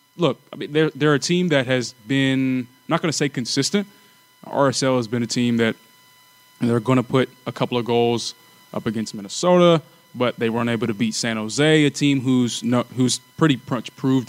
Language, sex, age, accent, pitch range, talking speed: English, male, 20-39, American, 120-140 Hz, 205 wpm